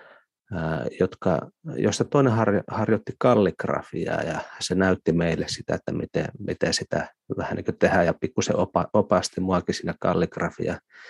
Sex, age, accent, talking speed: male, 30-49, native, 120 wpm